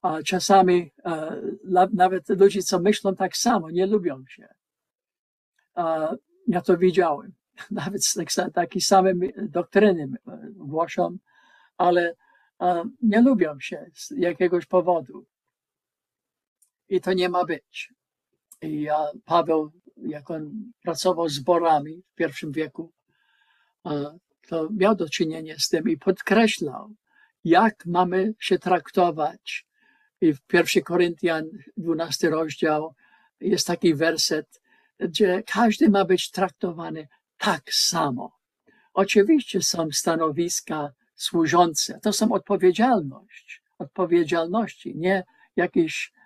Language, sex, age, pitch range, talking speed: Polish, male, 50-69, 165-210 Hz, 105 wpm